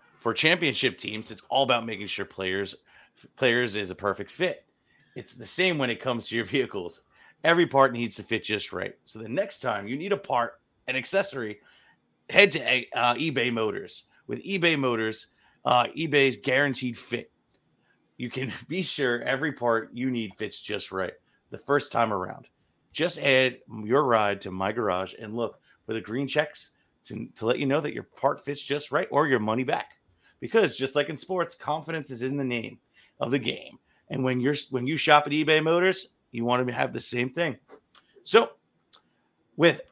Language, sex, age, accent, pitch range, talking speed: English, male, 30-49, American, 115-150 Hz, 190 wpm